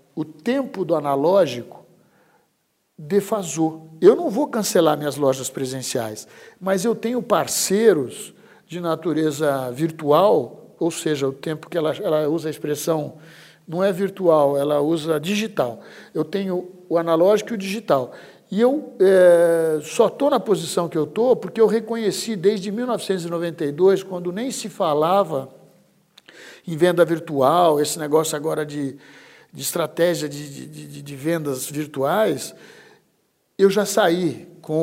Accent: Brazilian